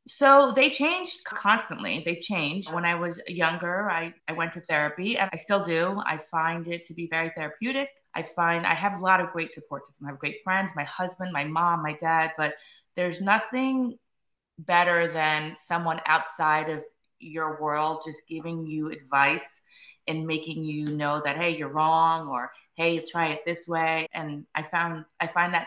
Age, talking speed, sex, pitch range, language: 20-39, 185 wpm, female, 155-185 Hz, English